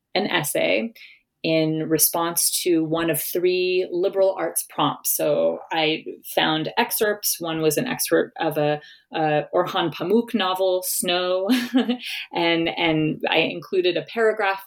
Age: 30-49